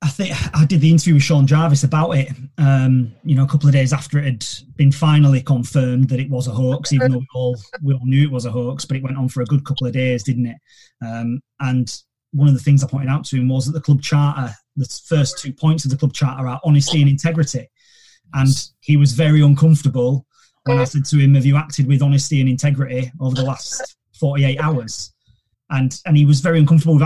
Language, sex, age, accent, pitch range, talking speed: English, male, 30-49, British, 125-145 Hz, 240 wpm